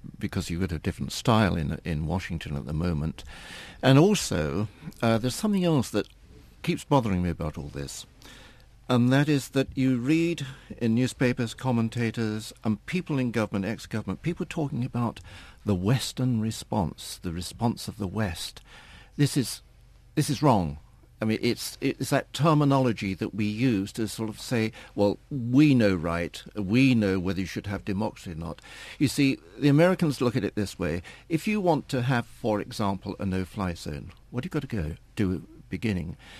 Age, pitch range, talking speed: 60-79, 95-130 Hz, 180 wpm